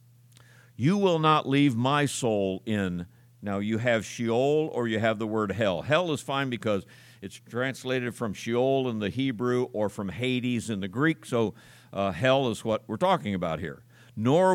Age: 50-69